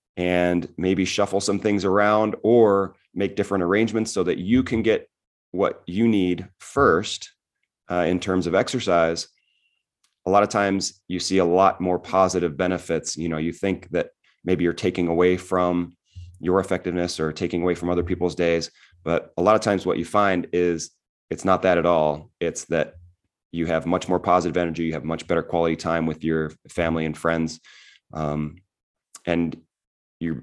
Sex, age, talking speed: male, 30-49, 180 wpm